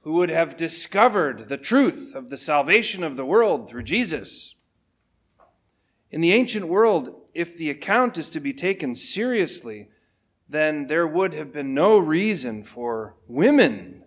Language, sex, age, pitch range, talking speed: English, male, 40-59, 125-175 Hz, 150 wpm